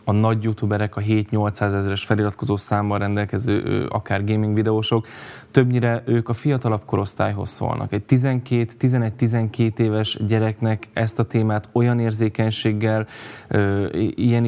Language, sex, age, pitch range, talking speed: Hungarian, male, 10-29, 105-115 Hz, 115 wpm